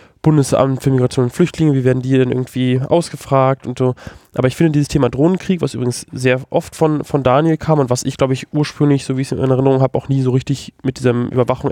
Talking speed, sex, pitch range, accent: 240 wpm, male, 125-145 Hz, German